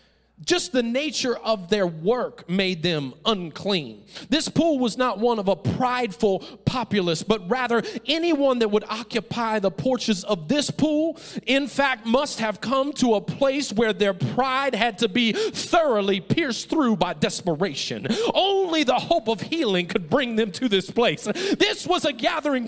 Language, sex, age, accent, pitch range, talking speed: English, male, 40-59, American, 220-285 Hz, 165 wpm